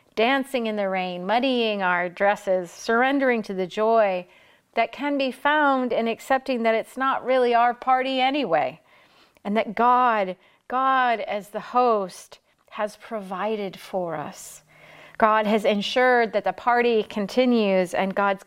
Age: 40-59